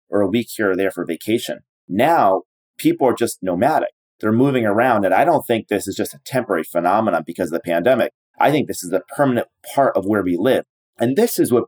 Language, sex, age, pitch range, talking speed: English, male, 30-49, 100-120 Hz, 230 wpm